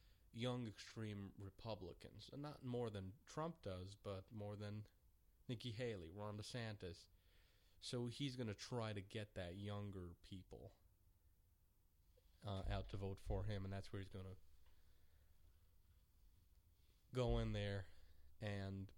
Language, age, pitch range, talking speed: English, 30-49, 85-105 Hz, 135 wpm